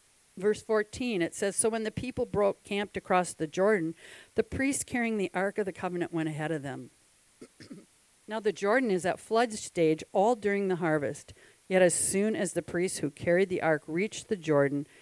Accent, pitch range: American, 185-270 Hz